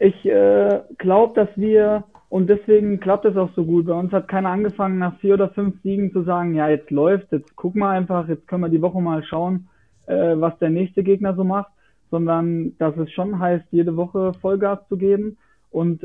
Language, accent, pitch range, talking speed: German, German, 165-190 Hz, 210 wpm